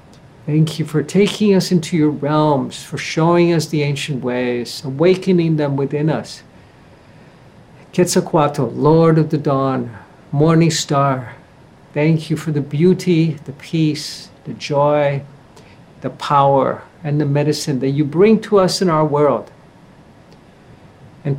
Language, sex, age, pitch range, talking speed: English, male, 60-79, 140-170 Hz, 135 wpm